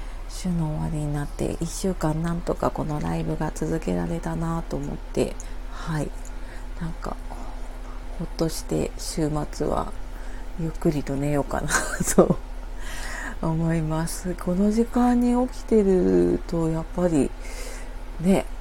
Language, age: Japanese, 40-59